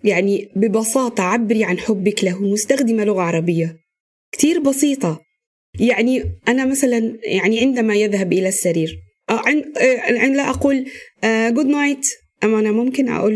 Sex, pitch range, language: female, 185-235 Hz, Arabic